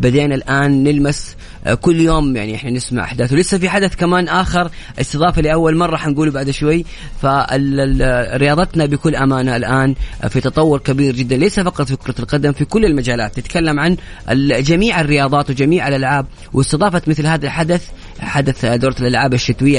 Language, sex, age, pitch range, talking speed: Arabic, female, 30-49, 125-160 Hz, 150 wpm